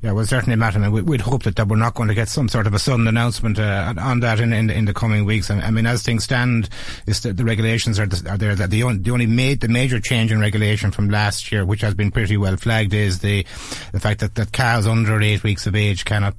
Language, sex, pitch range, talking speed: English, male, 100-115 Hz, 280 wpm